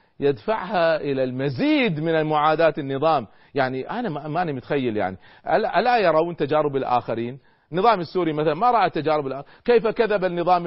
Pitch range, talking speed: 135-205 Hz, 140 wpm